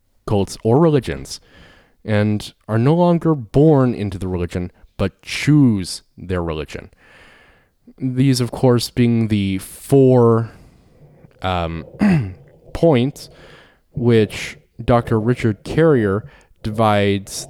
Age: 20-39